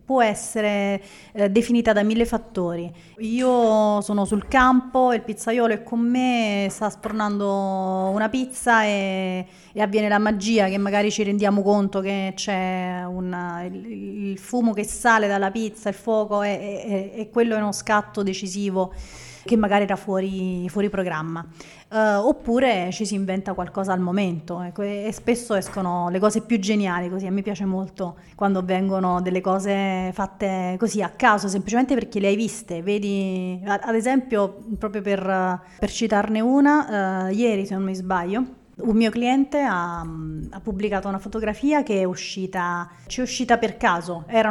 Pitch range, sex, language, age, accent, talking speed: 190-225 Hz, female, Italian, 30-49, native, 155 wpm